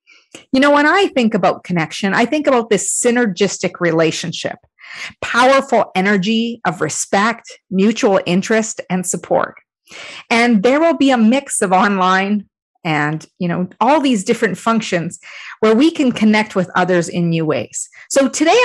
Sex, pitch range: female, 190-265 Hz